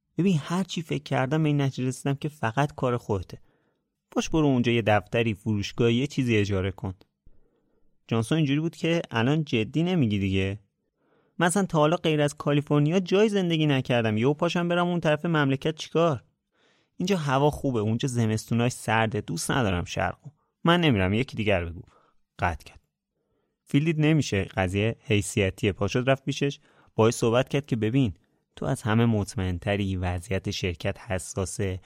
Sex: male